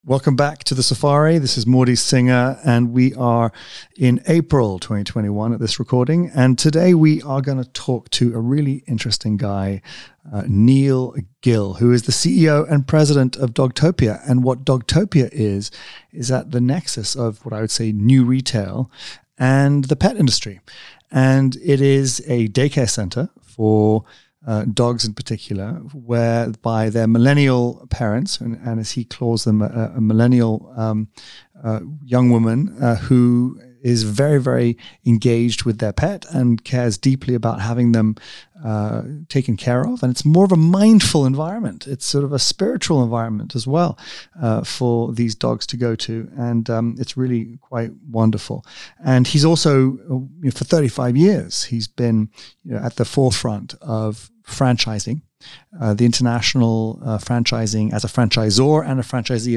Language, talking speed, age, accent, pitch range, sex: English, 160 wpm, 30-49, British, 115-135 Hz, male